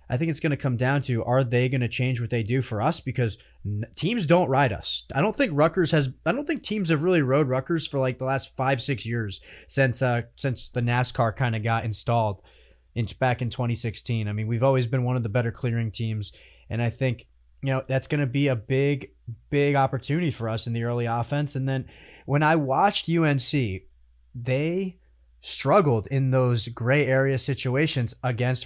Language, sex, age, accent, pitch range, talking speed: English, male, 30-49, American, 115-145 Hz, 210 wpm